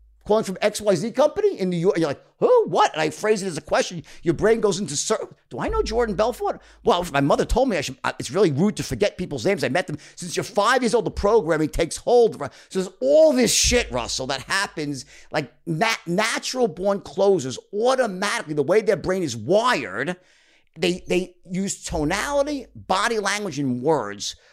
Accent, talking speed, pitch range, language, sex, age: American, 205 wpm, 145-205 Hz, English, male, 50-69